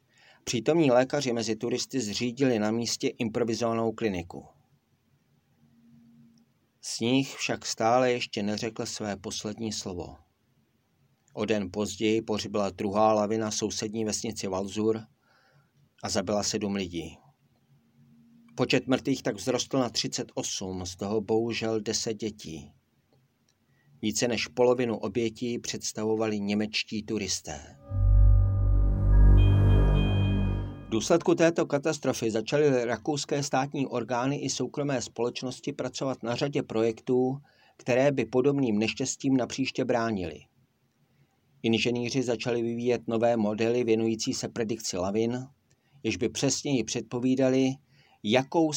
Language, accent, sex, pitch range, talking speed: Czech, native, male, 105-130 Hz, 105 wpm